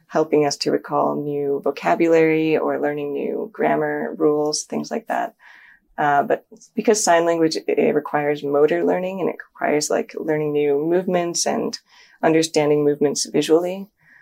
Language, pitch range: English, 145-170 Hz